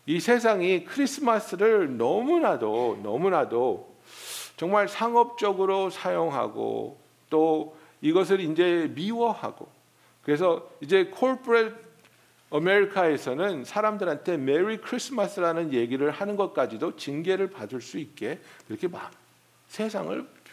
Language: Korean